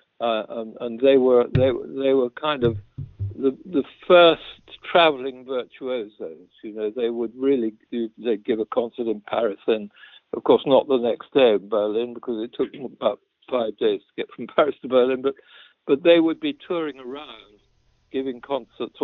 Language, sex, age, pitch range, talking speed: English, male, 60-79, 115-135 Hz, 185 wpm